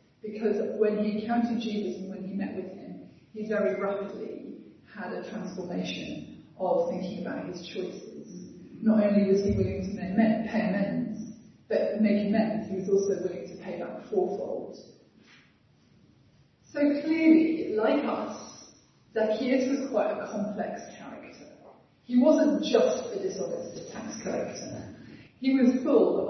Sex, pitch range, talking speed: female, 195-240 Hz, 145 wpm